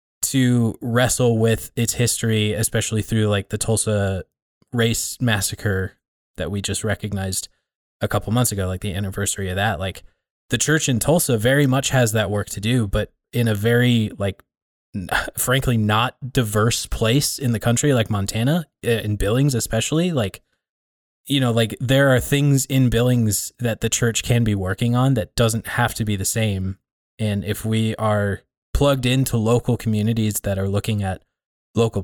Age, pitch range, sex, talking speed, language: 20-39, 100-125 Hz, male, 170 wpm, English